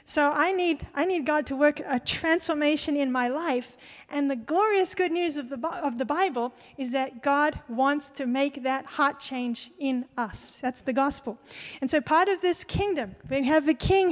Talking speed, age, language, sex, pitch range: 200 wpm, 40-59, English, female, 275-330 Hz